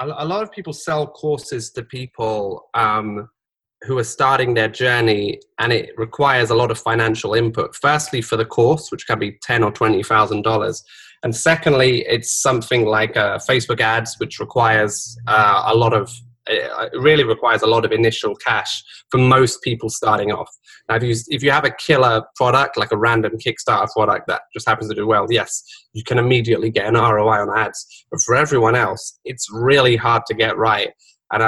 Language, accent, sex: English, British, male